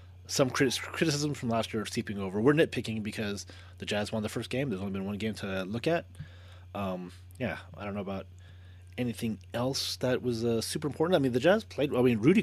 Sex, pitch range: male, 95-125 Hz